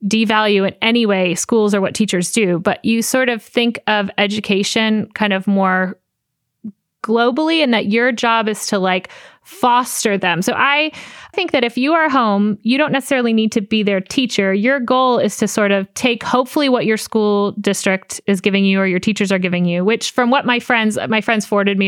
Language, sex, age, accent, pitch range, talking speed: English, female, 30-49, American, 200-250 Hz, 205 wpm